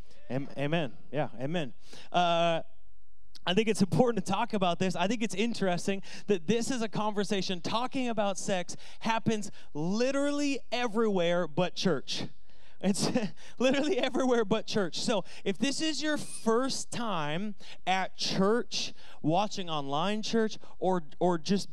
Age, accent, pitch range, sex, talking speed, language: 30-49, American, 185-235 Hz, male, 135 wpm, English